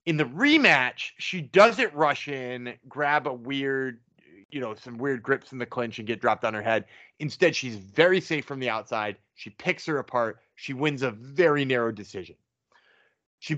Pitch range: 130-190 Hz